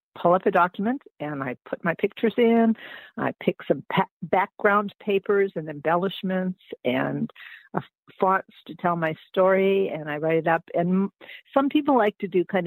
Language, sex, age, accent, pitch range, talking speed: English, female, 50-69, American, 165-195 Hz, 185 wpm